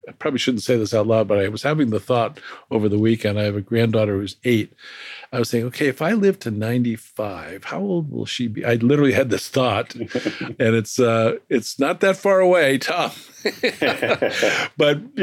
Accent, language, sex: American, English, male